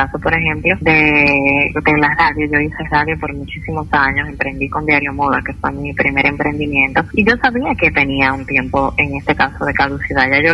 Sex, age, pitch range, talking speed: female, 20-39, 145-175 Hz, 200 wpm